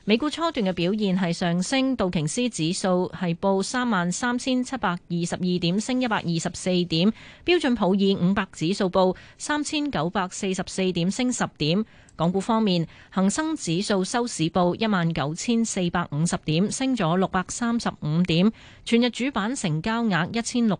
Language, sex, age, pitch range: Chinese, female, 30-49, 170-230 Hz